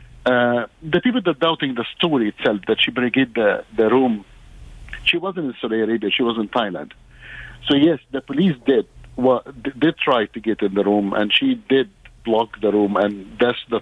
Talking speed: 205 wpm